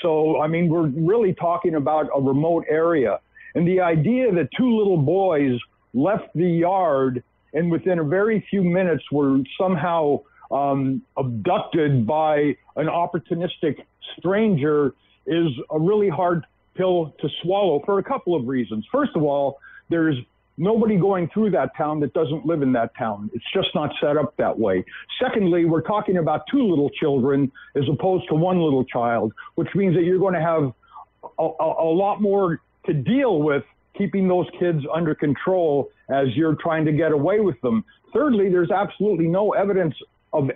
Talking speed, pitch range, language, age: 170 wpm, 145-185 Hz, English, 50-69